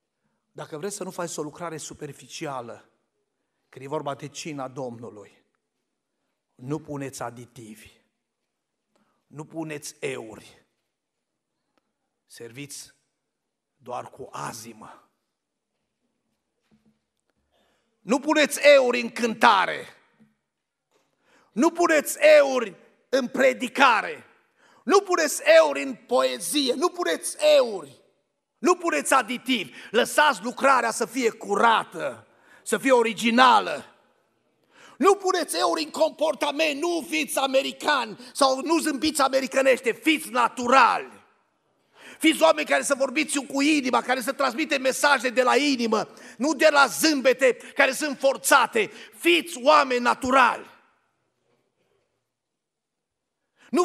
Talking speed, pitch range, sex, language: 105 wpm, 225-300 Hz, male, Romanian